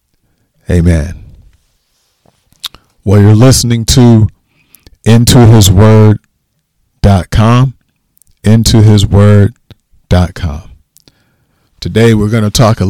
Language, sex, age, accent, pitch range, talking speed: English, male, 40-59, American, 95-115 Hz, 60 wpm